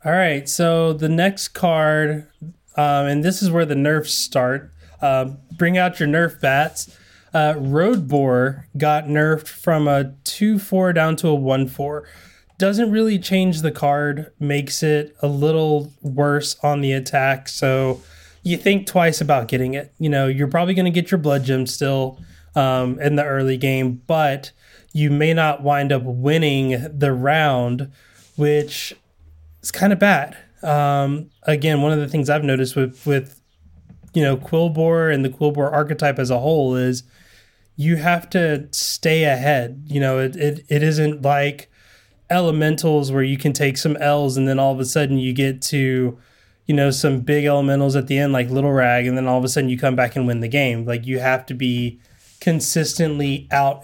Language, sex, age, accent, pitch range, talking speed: English, male, 20-39, American, 130-155 Hz, 180 wpm